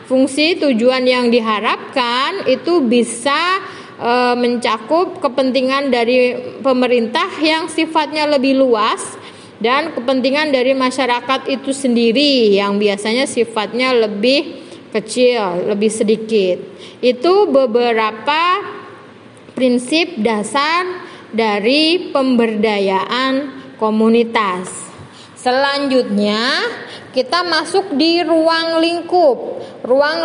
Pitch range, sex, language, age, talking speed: 235-300 Hz, female, Indonesian, 20-39, 85 wpm